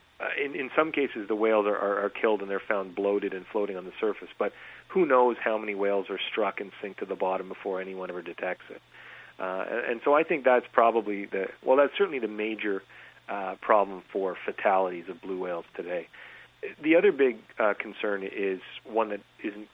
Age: 40-59